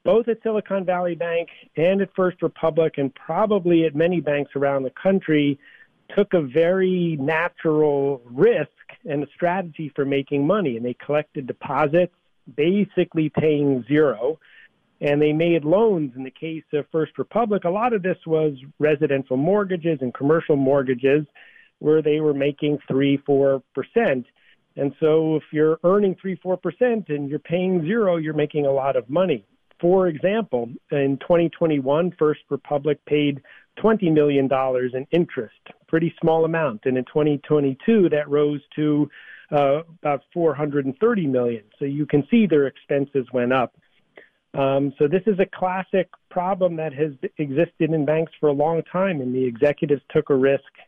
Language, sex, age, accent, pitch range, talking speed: English, male, 50-69, American, 140-175 Hz, 155 wpm